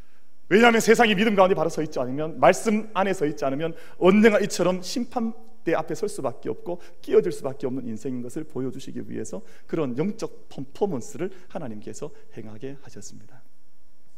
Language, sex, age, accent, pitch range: Korean, male, 40-59, native, 110-170 Hz